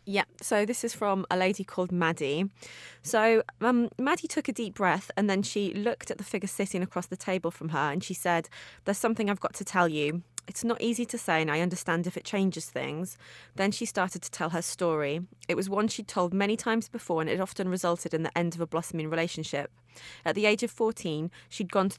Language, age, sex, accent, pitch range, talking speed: English, 20-39, female, British, 165-205 Hz, 235 wpm